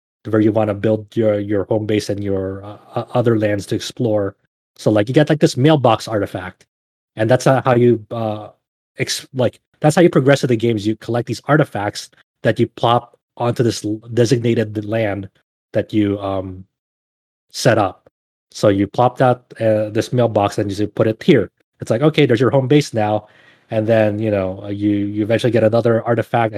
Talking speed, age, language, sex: 190 wpm, 20-39, English, male